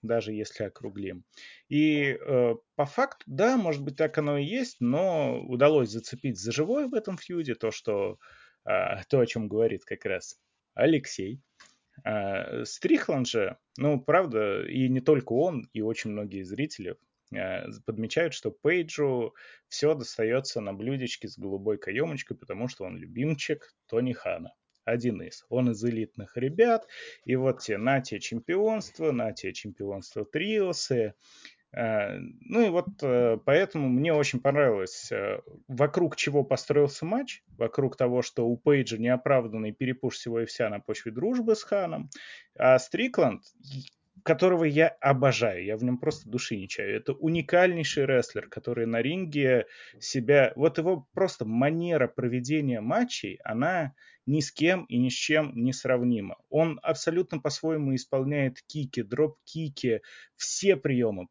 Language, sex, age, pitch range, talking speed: Russian, male, 20-39, 120-165 Hz, 140 wpm